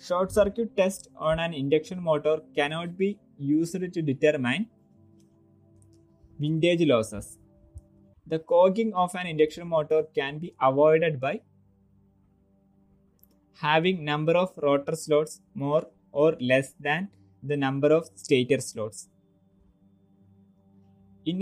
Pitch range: 120-175 Hz